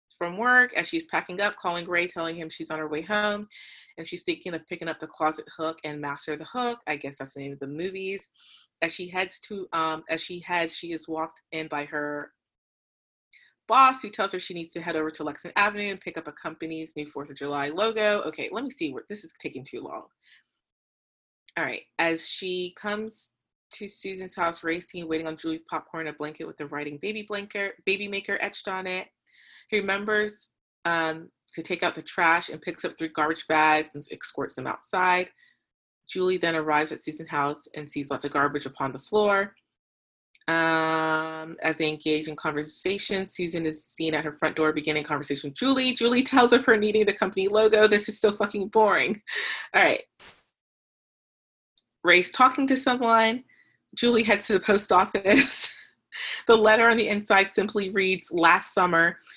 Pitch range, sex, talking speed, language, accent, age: 155-205 Hz, female, 190 wpm, English, American, 30-49